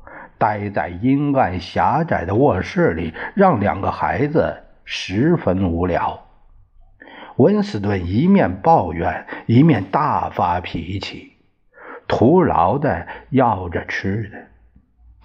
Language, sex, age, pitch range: Chinese, male, 60-79, 90-125 Hz